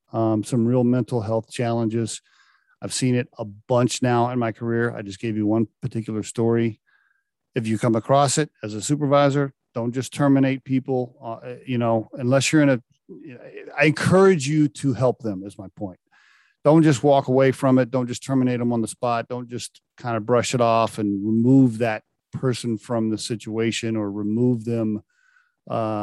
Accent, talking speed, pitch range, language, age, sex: American, 185 wpm, 110-140 Hz, English, 40-59, male